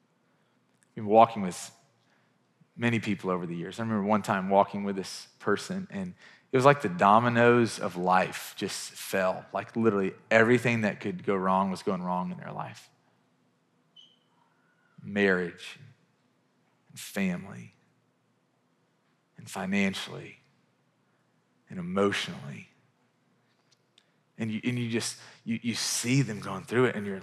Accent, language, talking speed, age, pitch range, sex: American, English, 135 wpm, 30-49, 100-120 Hz, male